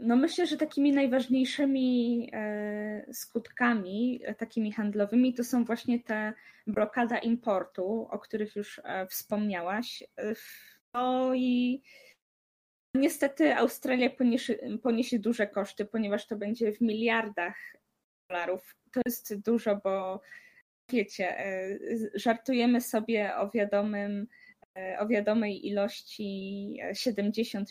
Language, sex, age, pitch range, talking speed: Polish, female, 20-39, 200-240 Hz, 95 wpm